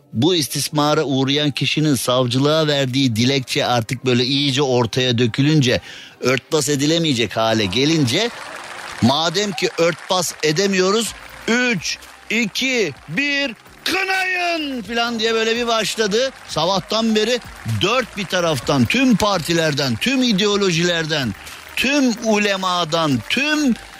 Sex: male